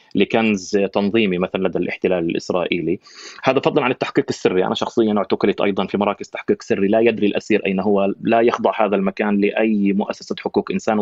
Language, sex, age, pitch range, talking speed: Arabic, male, 30-49, 100-130 Hz, 175 wpm